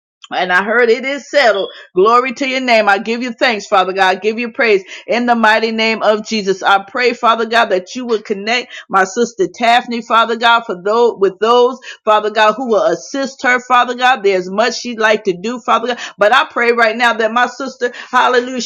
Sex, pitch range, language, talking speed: female, 215-255 Hz, English, 215 wpm